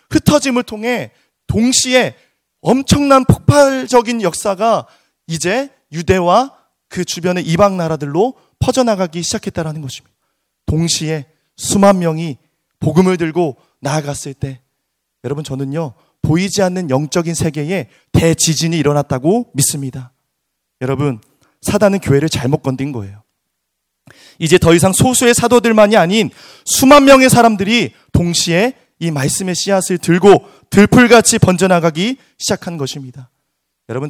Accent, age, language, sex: native, 30-49, Korean, male